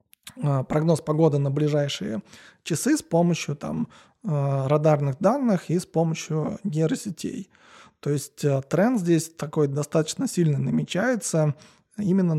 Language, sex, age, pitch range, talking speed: Russian, male, 20-39, 145-175 Hz, 110 wpm